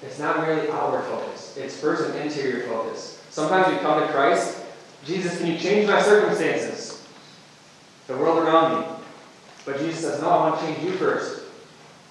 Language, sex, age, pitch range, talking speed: English, male, 20-39, 130-155 Hz, 175 wpm